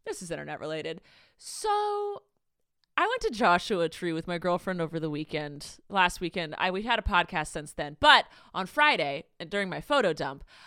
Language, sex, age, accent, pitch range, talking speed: English, female, 30-49, American, 185-290 Hz, 185 wpm